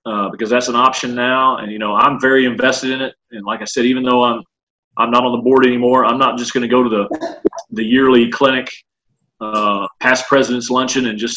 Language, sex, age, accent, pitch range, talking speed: English, male, 40-59, American, 115-130 Hz, 230 wpm